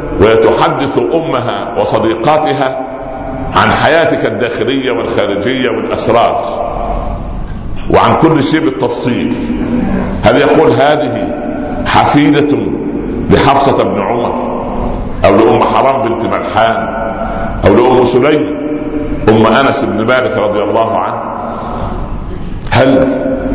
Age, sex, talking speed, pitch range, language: 60-79, male, 90 wpm, 115-155 Hz, Arabic